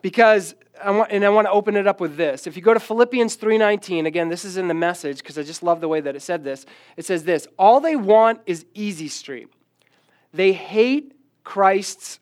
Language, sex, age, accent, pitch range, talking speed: English, male, 40-59, American, 140-200 Hz, 215 wpm